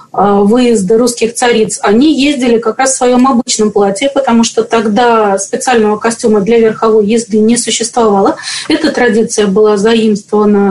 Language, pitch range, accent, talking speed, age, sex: Russian, 210-245 Hz, native, 140 wpm, 20-39, female